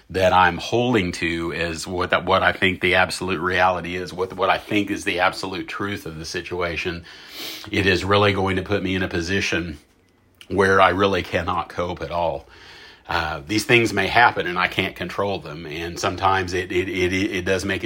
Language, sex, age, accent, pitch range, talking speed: English, male, 40-59, American, 90-95 Hz, 200 wpm